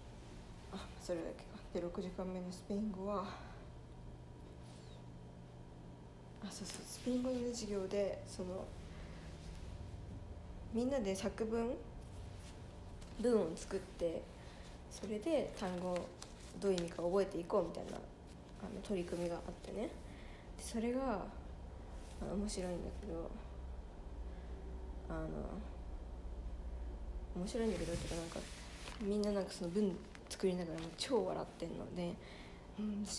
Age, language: 20-39, Japanese